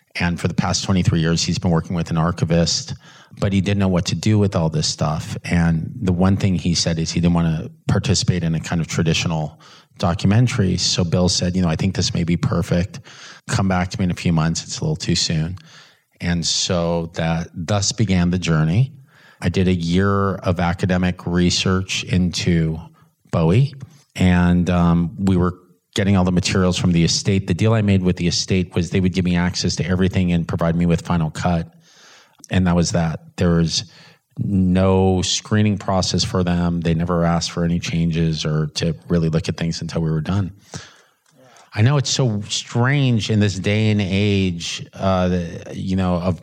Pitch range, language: 85-105 Hz, English